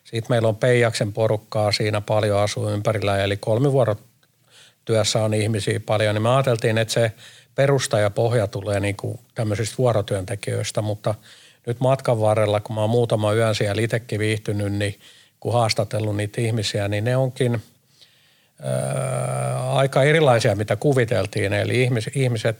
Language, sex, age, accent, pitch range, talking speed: Finnish, male, 50-69, native, 105-125 Hz, 145 wpm